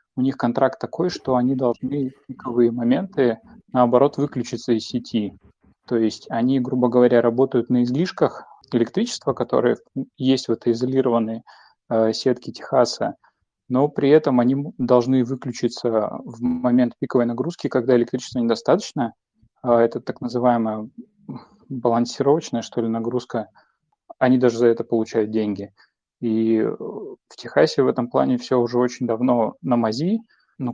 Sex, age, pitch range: male, 20-39, 115-130 Hz